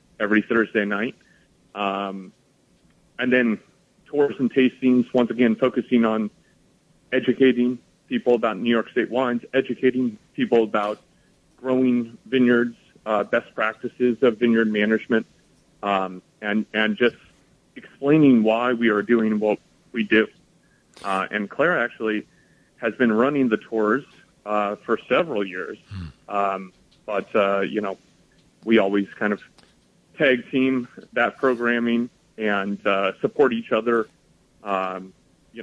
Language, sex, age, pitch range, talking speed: English, male, 30-49, 100-120 Hz, 125 wpm